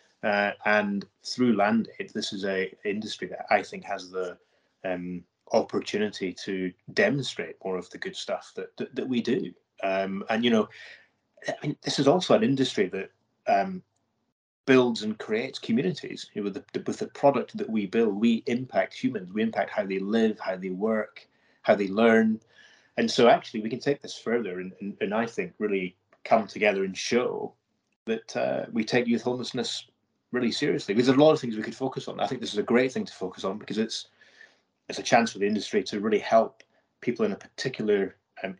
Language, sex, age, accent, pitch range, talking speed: English, male, 30-49, British, 95-140 Hz, 200 wpm